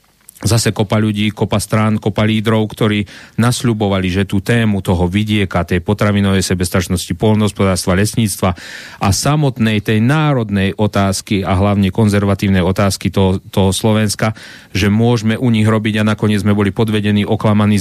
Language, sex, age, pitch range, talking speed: Slovak, male, 40-59, 100-115 Hz, 140 wpm